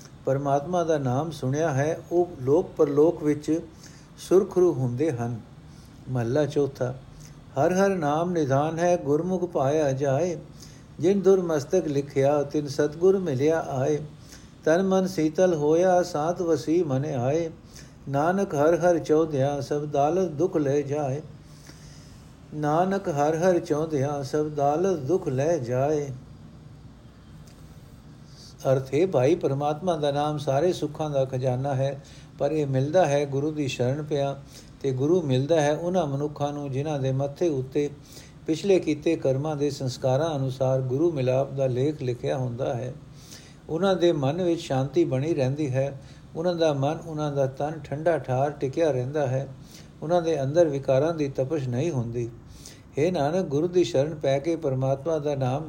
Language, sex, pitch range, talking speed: Punjabi, male, 135-165 Hz, 145 wpm